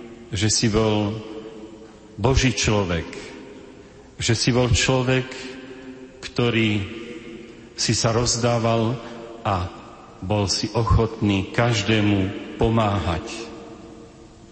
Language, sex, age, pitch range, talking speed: Slovak, male, 40-59, 105-120 Hz, 80 wpm